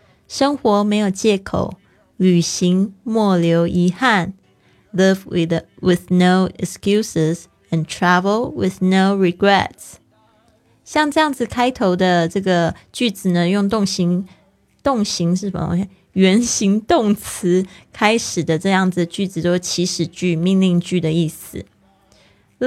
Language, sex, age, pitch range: Chinese, female, 20-39, 170-205 Hz